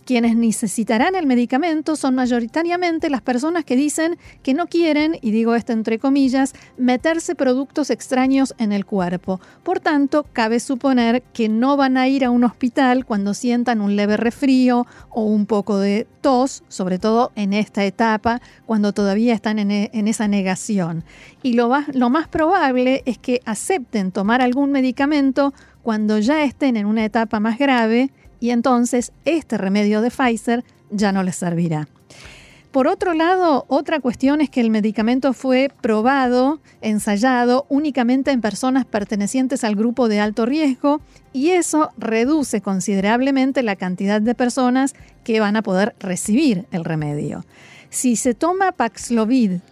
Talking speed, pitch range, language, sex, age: 155 wpm, 215-275 Hz, Spanish, female, 40-59